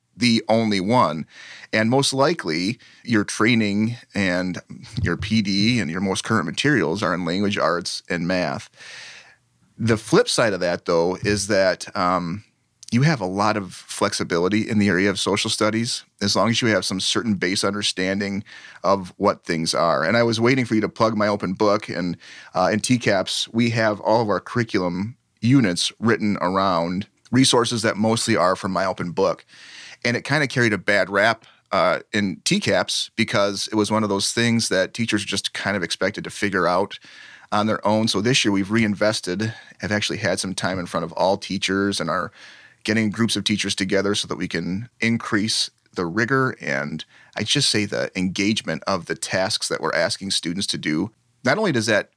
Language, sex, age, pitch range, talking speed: English, male, 30-49, 95-115 Hz, 190 wpm